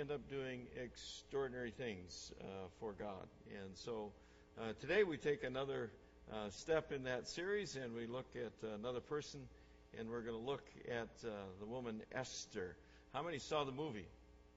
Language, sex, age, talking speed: English, male, 60-79, 170 wpm